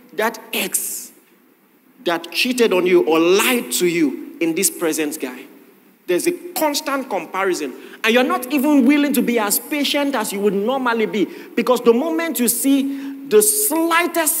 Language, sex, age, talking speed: English, male, 40-59, 165 wpm